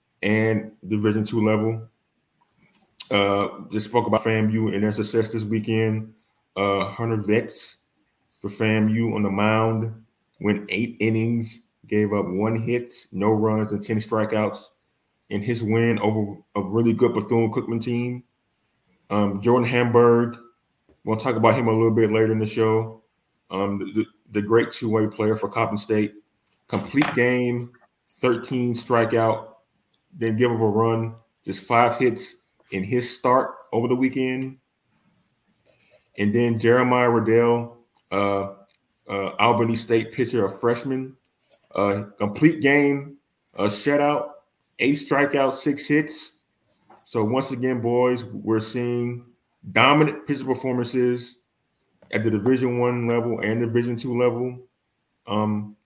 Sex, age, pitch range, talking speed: male, 20-39, 110-120 Hz, 135 wpm